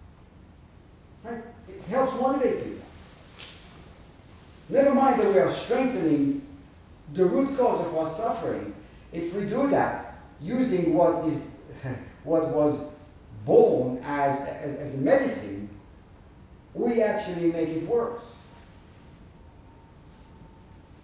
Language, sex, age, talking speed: English, male, 50-69, 105 wpm